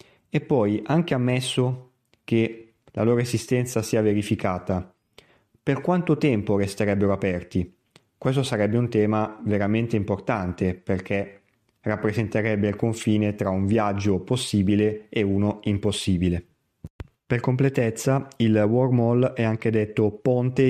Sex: male